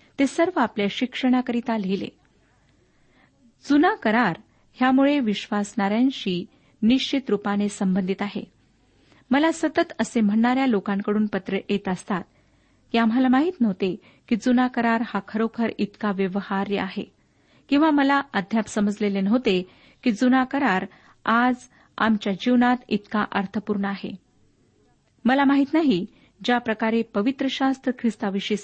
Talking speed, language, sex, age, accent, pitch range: 105 wpm, Marathi, female, 40-59, native, 205-260 Hz